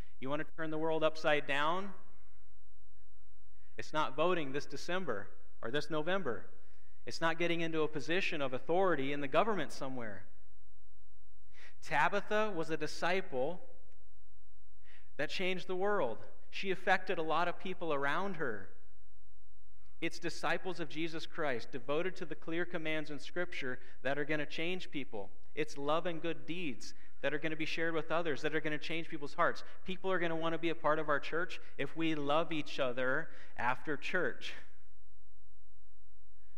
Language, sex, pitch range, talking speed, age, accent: English, male, 95-160 Hz, 165 wpm, 40-59, American